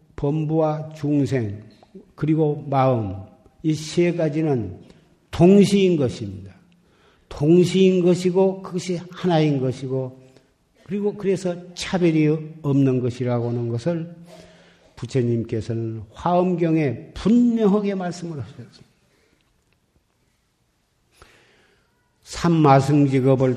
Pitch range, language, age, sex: 120-160 Hz, Korean, 50-69, male